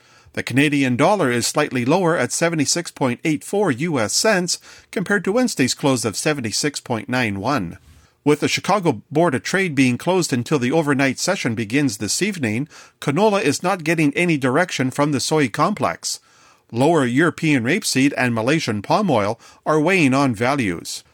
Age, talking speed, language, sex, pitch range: 40-59, 150 wpm, English, male, 130-175 Hz